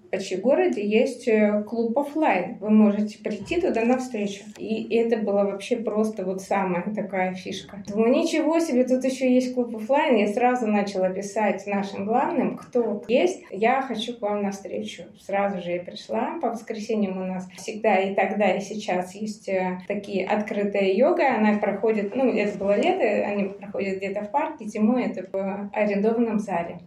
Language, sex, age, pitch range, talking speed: Russian, female, 20-39, 195-245 Hz, 165 wpm